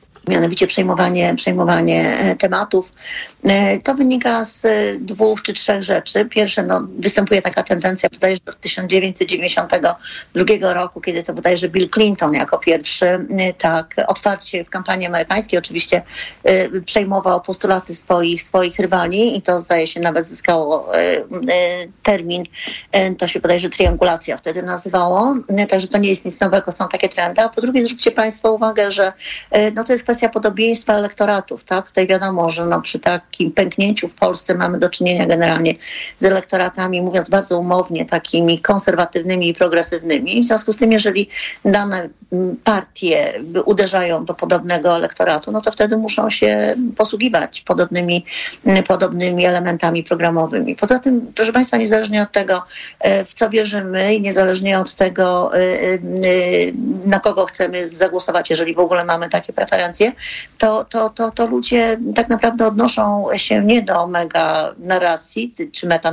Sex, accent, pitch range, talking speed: female, native, 175-215 Hz, 140 wpm